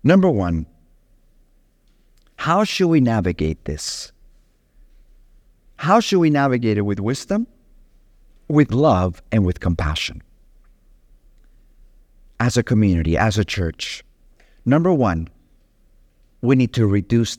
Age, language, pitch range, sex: 50-69, English, 105-165 Hz, male